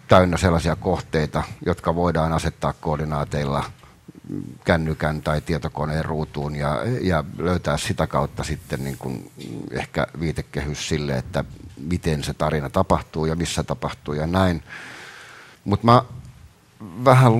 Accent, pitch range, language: native, 75-95 Hz, Finnish